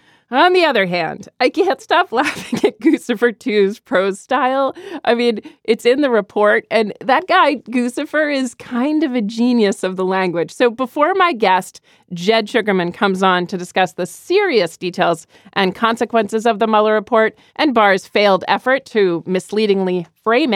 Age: 40-59